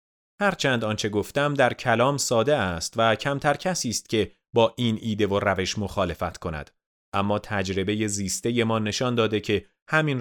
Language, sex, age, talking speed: Persian, male, 30-49, 165 wpm